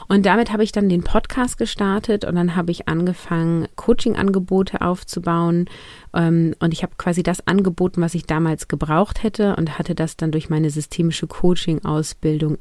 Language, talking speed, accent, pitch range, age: German, 160 wpm, German, 160-195 Hz, 30-49